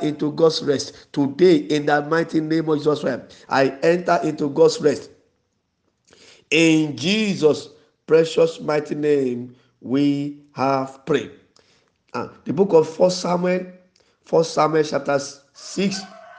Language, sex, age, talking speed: English, male, 50-69, 125 wpm